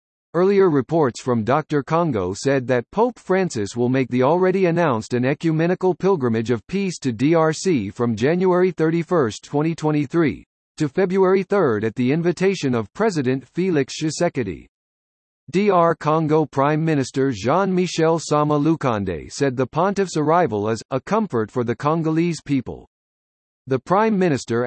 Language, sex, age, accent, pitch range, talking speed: English, male, 50-69, American, 125-175 Hz, 140 wpm